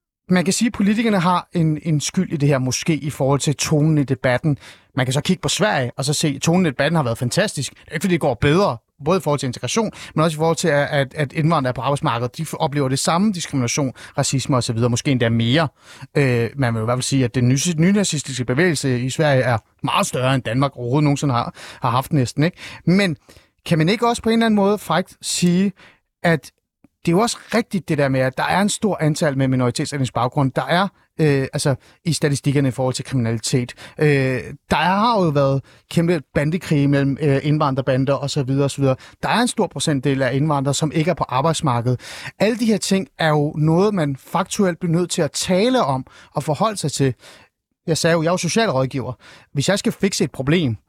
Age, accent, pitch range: 30-49, native, 135-175 Hz